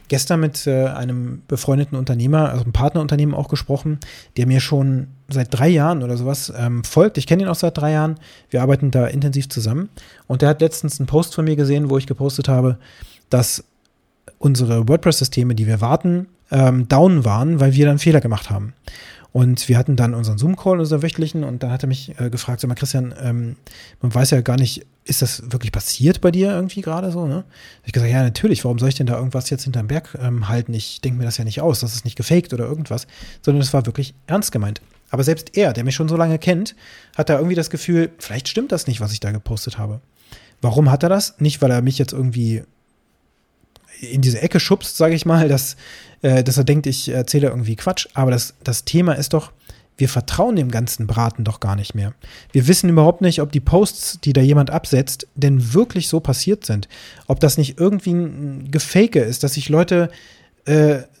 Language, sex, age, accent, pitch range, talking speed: German, male, 30-49, German, 125-160 Hz, 215 wpm